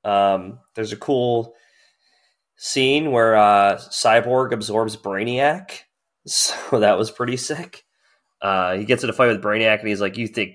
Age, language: 20-39, English